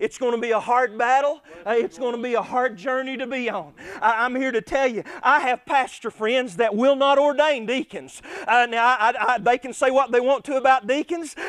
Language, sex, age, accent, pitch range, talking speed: English, male, 40-59, American, 250-285 Hz, 225 wpm